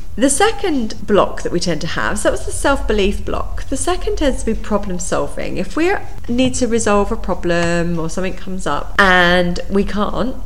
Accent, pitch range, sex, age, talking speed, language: British, 160-215 Hz, female, 30-49, 200 wpm, English